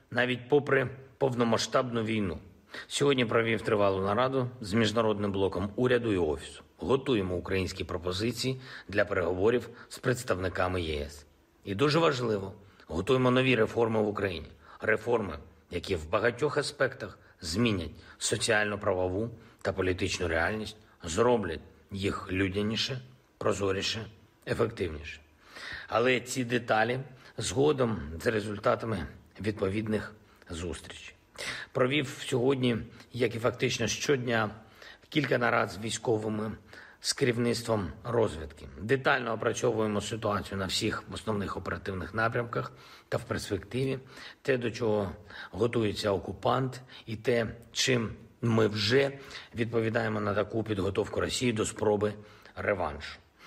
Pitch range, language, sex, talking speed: 100-125 Hz, Ukrainian, male, 110 wpm